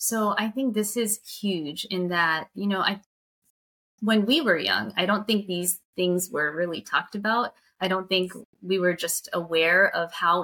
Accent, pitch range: American, 175-215 Hz